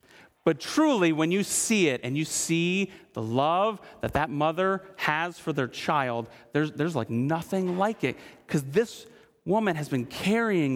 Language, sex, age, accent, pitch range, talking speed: English, male, 30-49, American, 125-195 Hz, 165 wpm